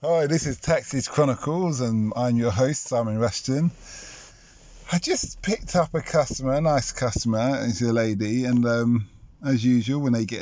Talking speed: 175 wpm